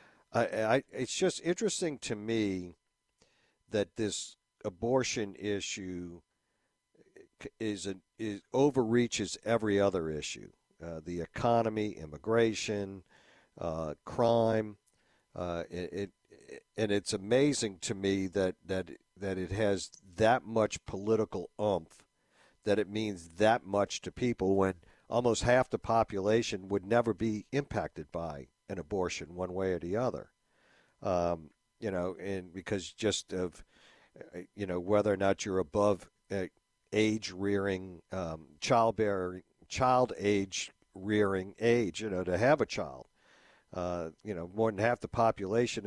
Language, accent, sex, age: English, American, male, 50-69